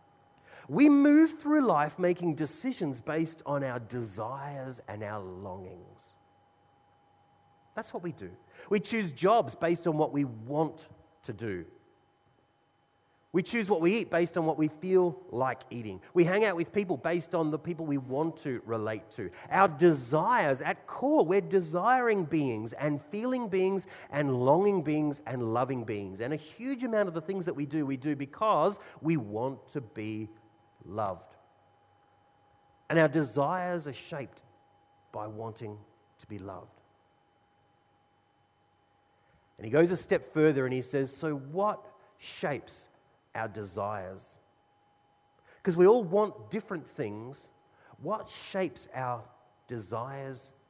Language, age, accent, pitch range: English, 30-49, Australian, 115-175 Hz